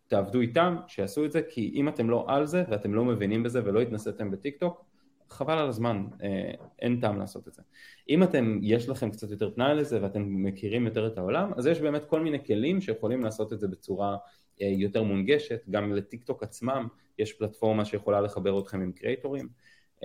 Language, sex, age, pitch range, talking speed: English, male, 20-39, 100-140 Hz, 180 wpm